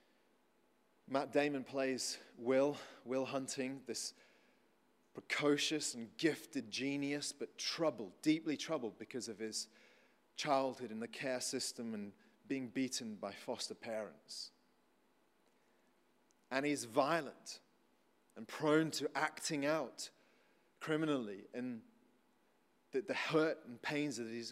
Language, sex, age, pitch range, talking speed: English, male, 30-49, 130-160 Hz, 115 wpm